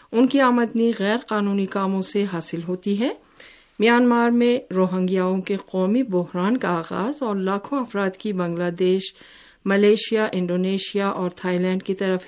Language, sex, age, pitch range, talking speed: Urdu, female, 50-69, 180-210 Hz, 150 wpm